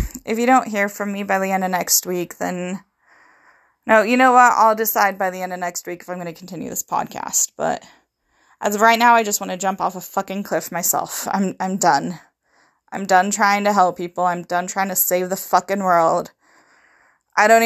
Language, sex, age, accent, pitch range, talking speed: English, female, 20-39, American, 185-235 Hz, 225 wpm